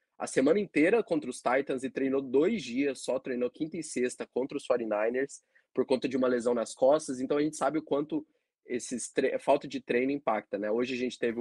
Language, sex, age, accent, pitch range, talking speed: Portuguese, male, 20-39, Brazilian, 115-145 Hz, 215 wpm